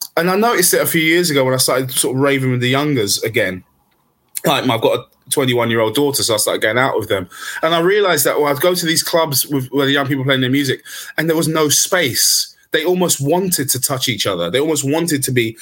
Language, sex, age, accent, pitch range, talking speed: English, male, 20-39, British, 130-160 Hz, 260 wpm